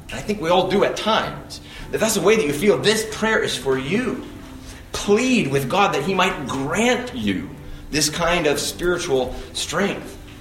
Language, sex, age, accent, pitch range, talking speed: English, male, 30-49, American, 100-165 Hz, 185 wpm